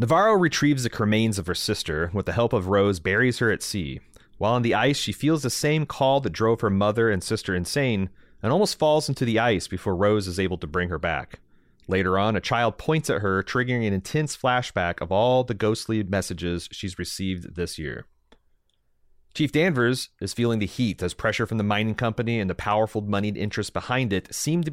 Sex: male